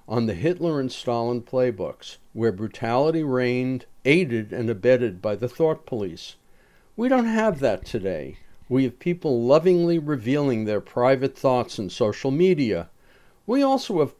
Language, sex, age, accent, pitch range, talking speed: English, male, 60-79, American, 115-160 Hz, 150 wpm